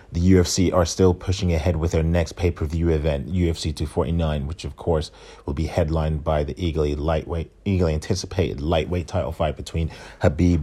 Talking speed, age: 170 wpm, 30-49